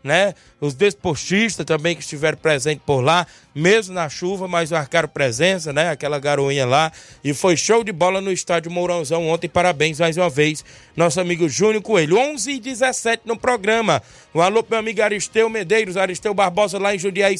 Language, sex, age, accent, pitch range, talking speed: Portuguese, male, 20-39, Brazilian, 175-205 Hz, 180 wpm